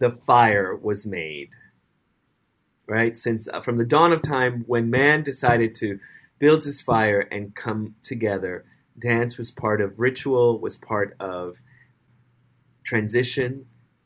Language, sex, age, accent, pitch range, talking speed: English, male, 30-49, American, 100-125 Hz, 130 wpm